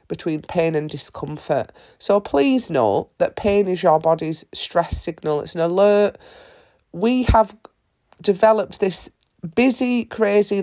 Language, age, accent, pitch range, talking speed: English, 30-49, British, 155-205 Hz, 130 wpm